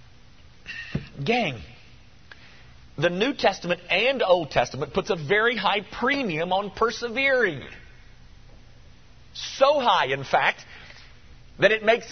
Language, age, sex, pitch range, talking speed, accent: English, 50-69, male, 170-240 Hz, 105 wpm, American